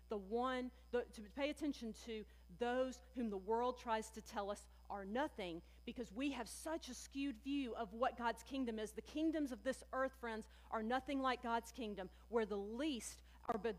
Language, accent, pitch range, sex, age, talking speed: English, American, 225-280 Hz, female, 40-59, 190 wpm